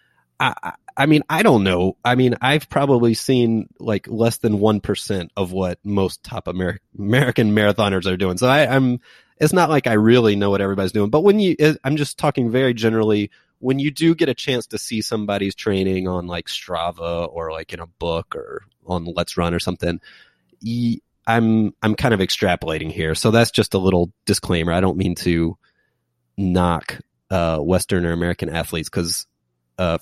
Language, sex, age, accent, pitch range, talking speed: English, male, 30-49, American, 90-125 Hz, 190 wpm